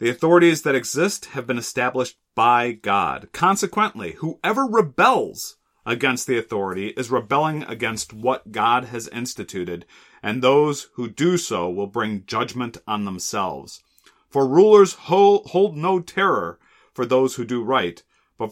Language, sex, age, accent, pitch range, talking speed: English, male, 40-59, American, 110-155 Hz, 145 wpm